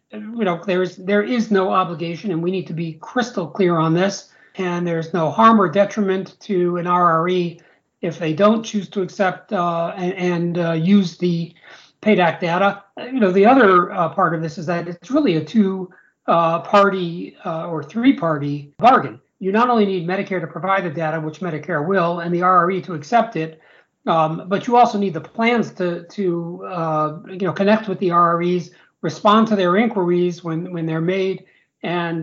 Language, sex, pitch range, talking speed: English, male, 165-200 Hz, 195 wpm